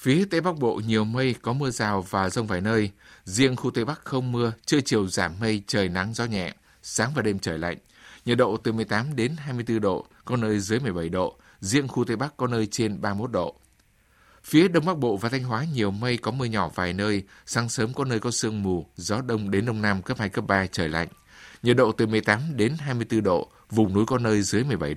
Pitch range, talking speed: 100-125 Hz, 235 wpm